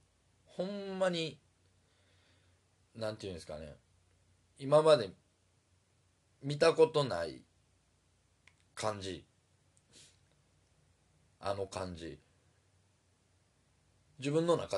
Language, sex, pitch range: Japanese, male, 90-125 Hz